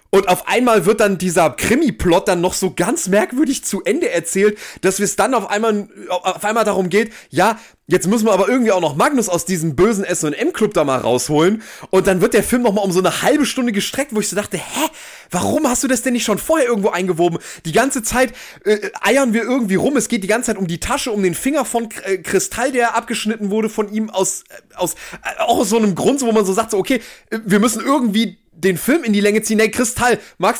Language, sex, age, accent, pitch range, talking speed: German, male, 30-49, German, 185-235 Hz, 235 wpm